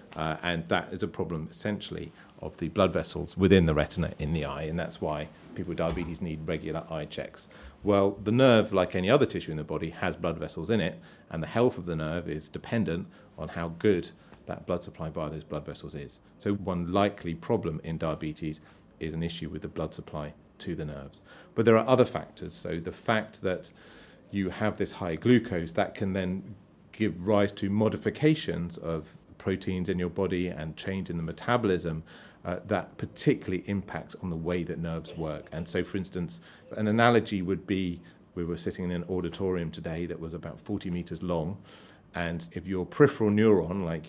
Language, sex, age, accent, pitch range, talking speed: English, male, 40-59, British, 85-100 Hz, 195 wpm